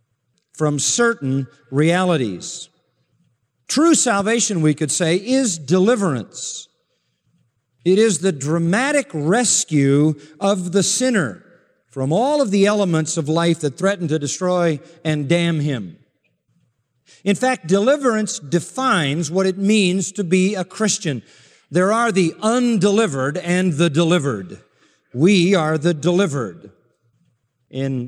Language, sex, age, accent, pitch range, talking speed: English, male, 50-69, American, 150-200 Hz, 120 wpm